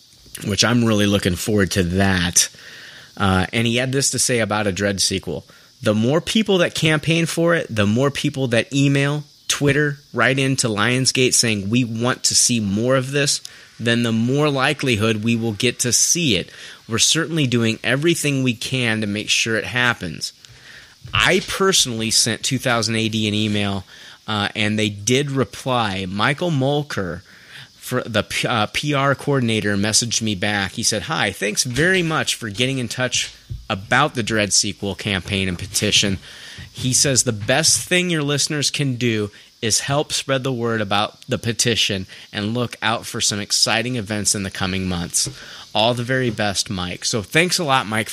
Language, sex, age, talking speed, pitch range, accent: English, male, 30-49, 170 wpm, 105-135 Hz, American